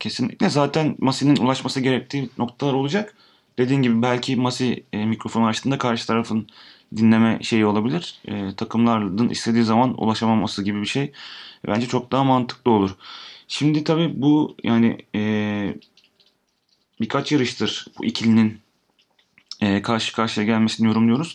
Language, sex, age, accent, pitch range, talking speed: Turkish, male, 30-49, native, 105-125 Hz, 130 wpm